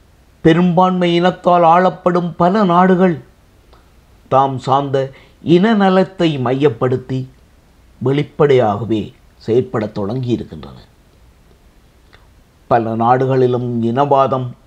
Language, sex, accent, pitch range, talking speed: Tamil, male, native, 120-165 Hz, 65 wpm